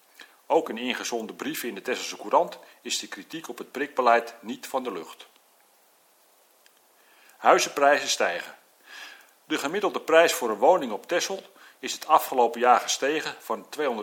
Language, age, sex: Dutch, 40-59, male